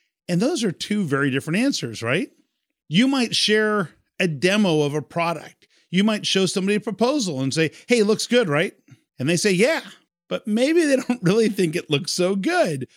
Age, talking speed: 40-59, 200 wpm